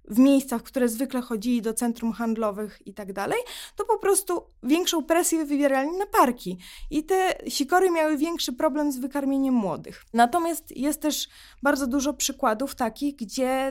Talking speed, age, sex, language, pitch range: 160 wpm, 20-39, female, Polish, 230-285 Hz